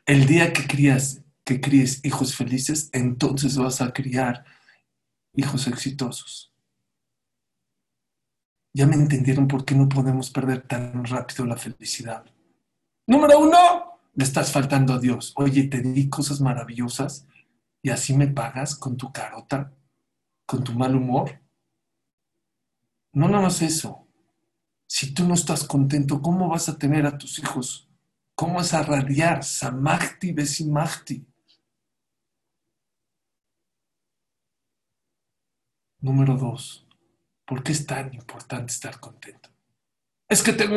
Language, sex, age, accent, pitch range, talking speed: Spanish, male, 50-69, Mexican, 130-155 Hz, 120 wpm